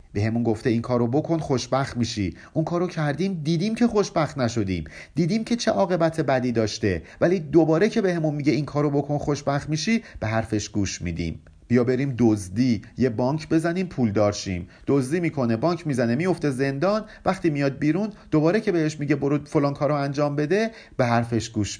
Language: Persian